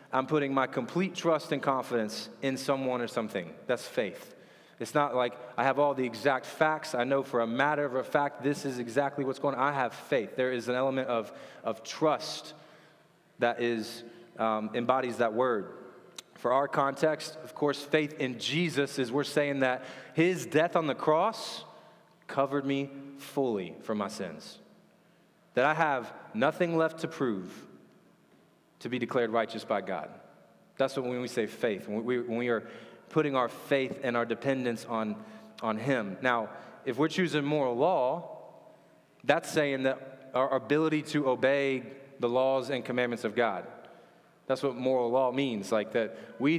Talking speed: 175 wpm